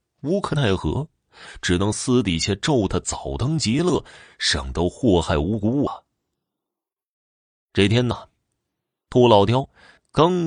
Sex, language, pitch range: male, Chinese, 90-140 Hz